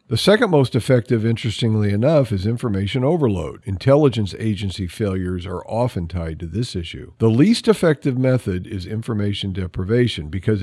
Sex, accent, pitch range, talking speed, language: male, American, 95-135 Hz, 145 wpm, English